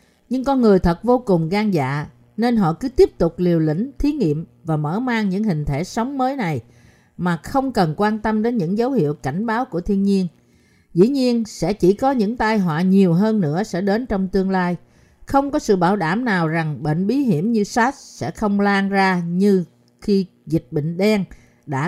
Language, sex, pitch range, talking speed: Vietnamese, female, 170-230 Hz, 215 wpm